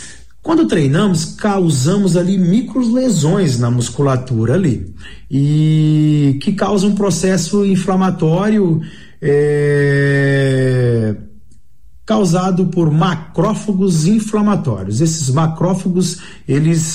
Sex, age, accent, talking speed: male, 40-59, Brazilian, 80 wpm